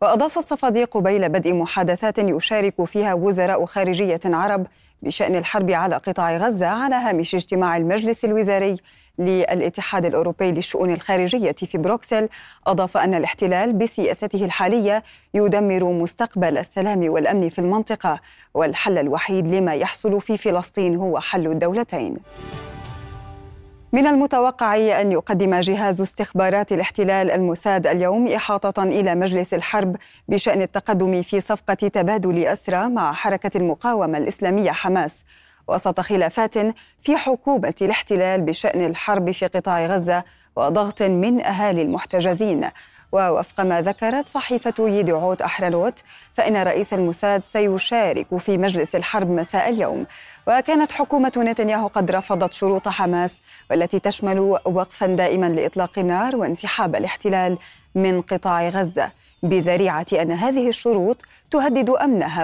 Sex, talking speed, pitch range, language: female, 120 wpm, 180-215 Hz, Arabic